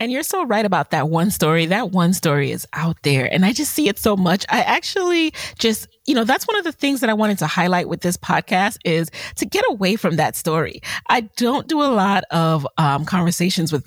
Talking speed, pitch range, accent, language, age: 240 wpm, 155-210 Hz, American, English, 30-49